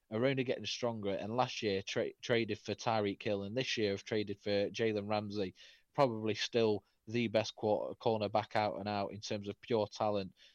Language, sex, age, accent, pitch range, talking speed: English, male, 30-49, British, 100-135 Hz, 200 wpm